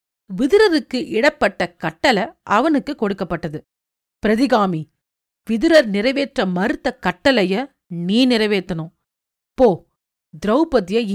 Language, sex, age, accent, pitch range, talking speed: Tamil, female, 40-59, native, 175-255 Hz, 75 wpm